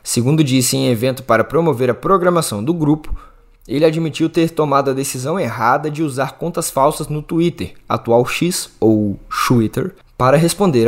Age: 20-39